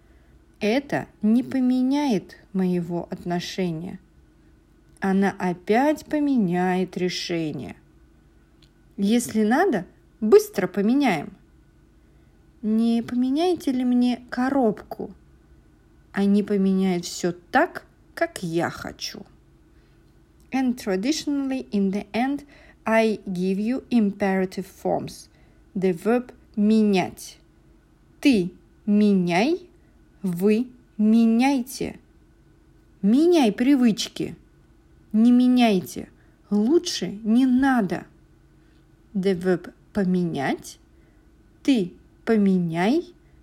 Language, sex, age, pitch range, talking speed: English, female, 40-59, 185-255 Hz, 75 wpm